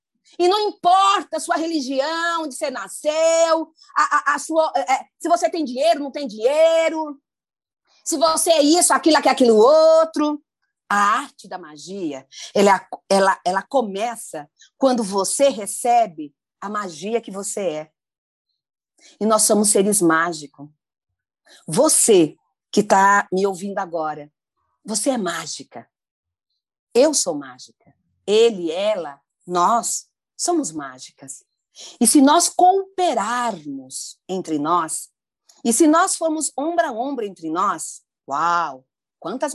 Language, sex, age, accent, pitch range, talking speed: Portuguese, female, 40-59, Brazilian, 200-320 Hz, 120 wpm